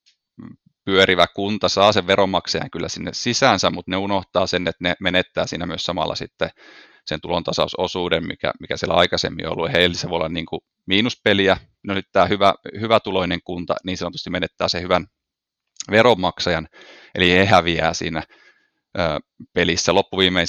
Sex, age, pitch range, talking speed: male, 30-49, 85-95 Hz, 160 wpm